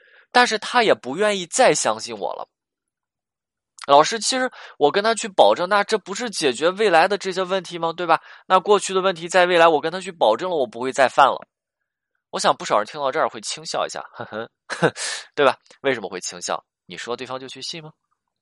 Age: 20-39